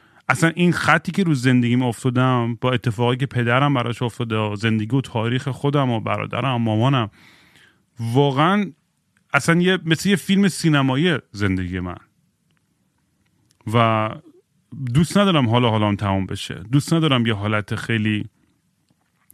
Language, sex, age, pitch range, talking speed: Persian, male, 30-49, 110-140 Hz, 125 wpm